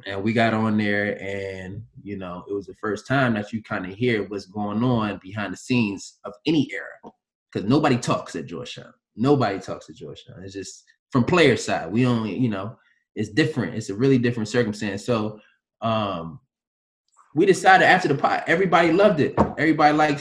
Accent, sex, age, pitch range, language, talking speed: American, male, 20-39, 110-130 Hz, English, 190 wpm